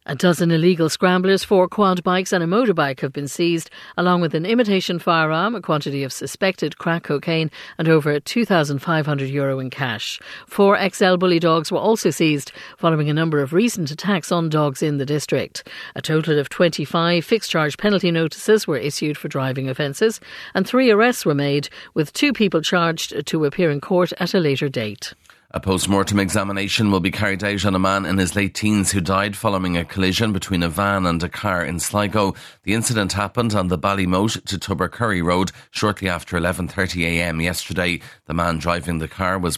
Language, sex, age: English, female, 60-79